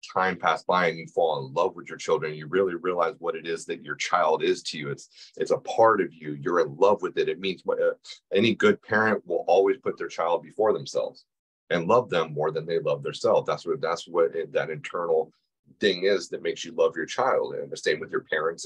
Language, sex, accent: English, male, American